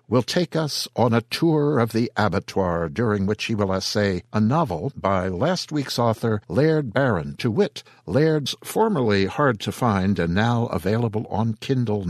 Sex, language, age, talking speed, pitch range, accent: male, English, 60-79, 170 wpm, 100-135 Hz, American